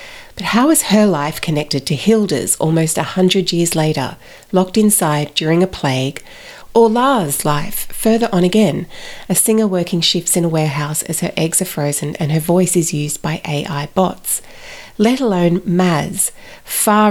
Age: 40-59